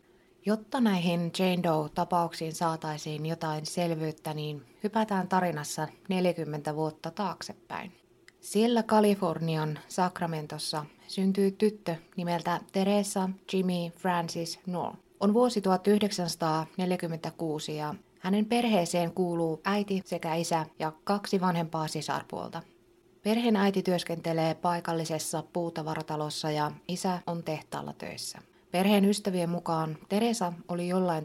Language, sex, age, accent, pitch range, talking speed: Finnish, female, 20-39, native, 160-190 Hz, 100 wpm